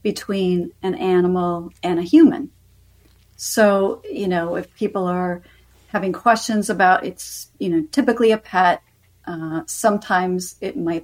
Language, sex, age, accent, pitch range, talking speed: English, female, 40-59, American, 170-225 Hz, 135 wpm